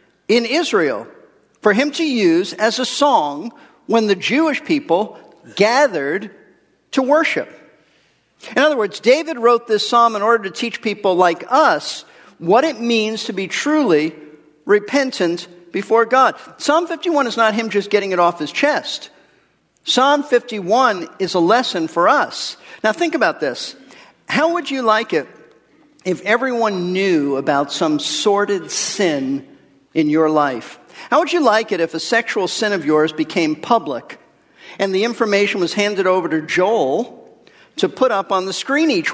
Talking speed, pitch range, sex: 160 wpm, 195-280 Hz, male